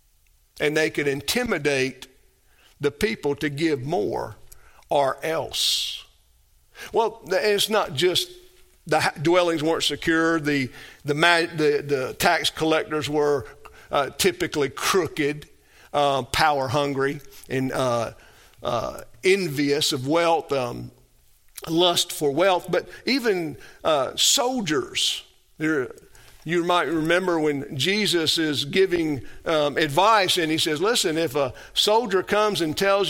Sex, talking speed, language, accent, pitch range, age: male, 120 wpm, English, American, 140-180 Hz, 50-69